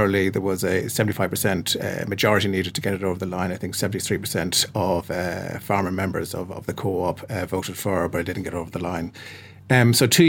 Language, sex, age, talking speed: English, male, 30-49, 235 wpm